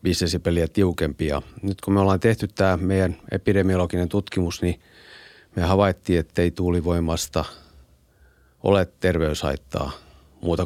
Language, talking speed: Finnish, 120 wpm